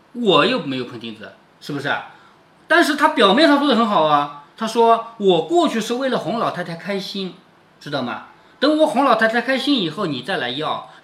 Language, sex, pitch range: Chinese, male, 190-315 Hz